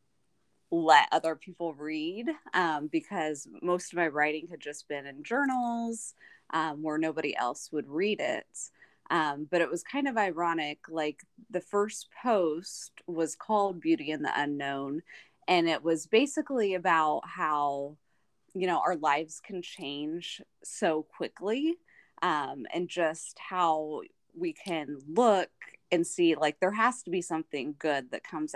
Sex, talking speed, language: female, 150 wpm, English